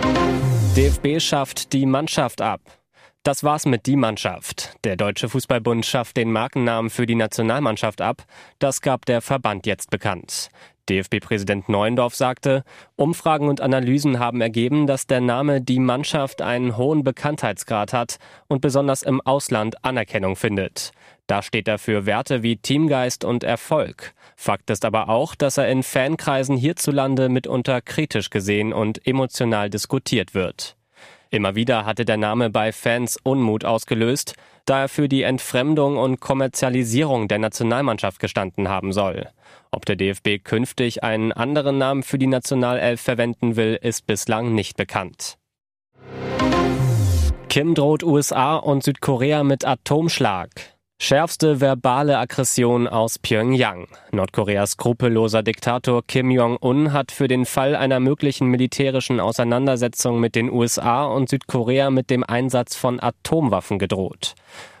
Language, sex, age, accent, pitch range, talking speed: German, male, 20-39, German, 110-135 Hz, 135 wpm